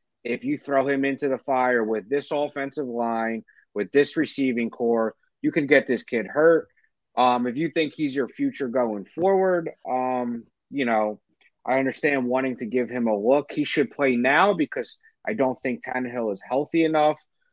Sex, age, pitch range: male, 30-49, 115-155 Hz